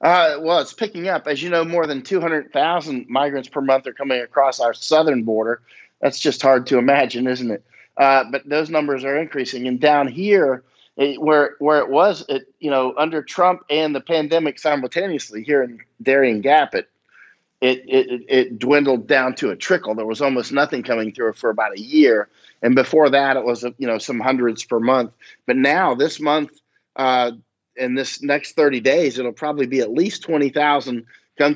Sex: male